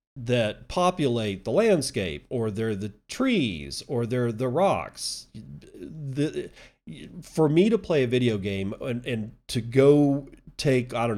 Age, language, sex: 40-59, English, male